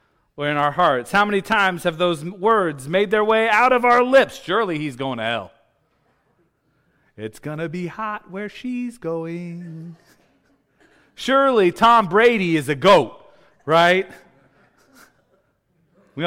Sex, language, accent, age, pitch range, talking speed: male, English, American, 30-49, 135-220 Hz, 135 wpm